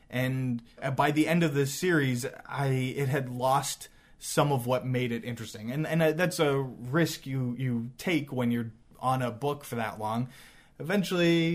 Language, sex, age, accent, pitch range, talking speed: English, male, 20-39, American, 120-150 Hz, 175 wpm